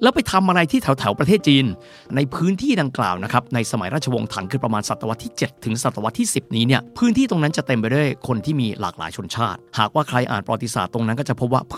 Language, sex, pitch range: Thai, male, 110-140 Hz